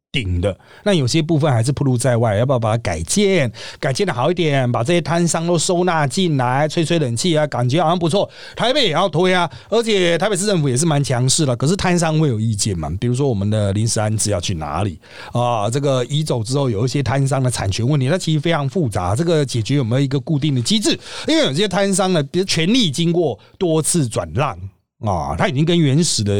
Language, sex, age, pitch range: Chinese, male, 30-49, 120-175 Hz